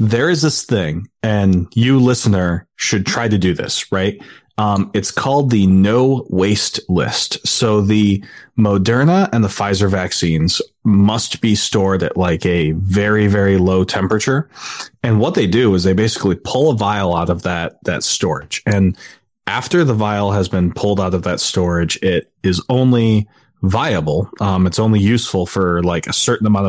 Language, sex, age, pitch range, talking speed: English, male, 30-49, 95-110 Hz, 170 wpm